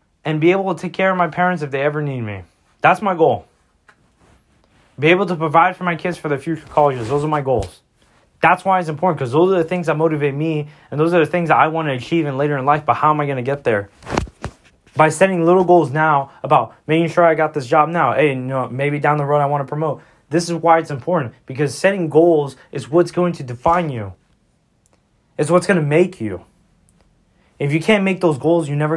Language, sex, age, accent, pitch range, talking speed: English, male, 20-39, American, 115-165 Hz, 240 wpm